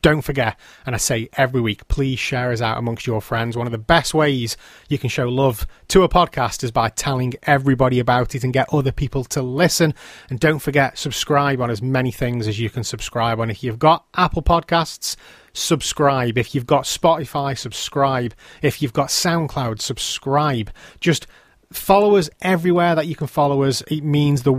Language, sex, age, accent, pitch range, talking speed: English, male, 30-49, British, 125-165 Hz, 195 wpm